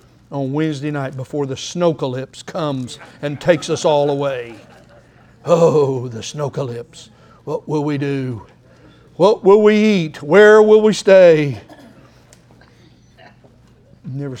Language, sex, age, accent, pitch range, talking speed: English, male, 60-79, American, 120-150 Hz, 125 wpm